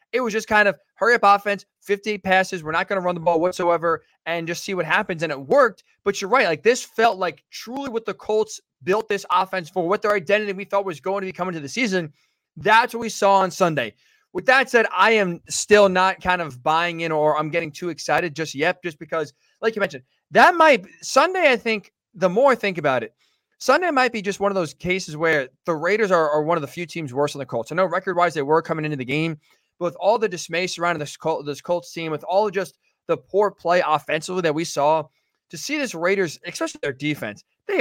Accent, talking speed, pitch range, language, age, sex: American, 250 wpm, 155-205 Hz, English, 20-39, male